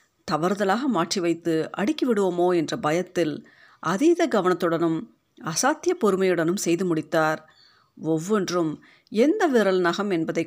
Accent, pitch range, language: native, 165-230 Hz, Tamil